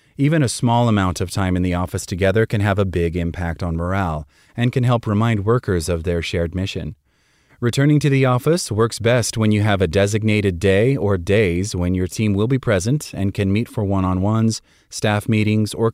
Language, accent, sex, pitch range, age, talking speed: English, American, male, 90-115 Hz, 30-49, 205 wpm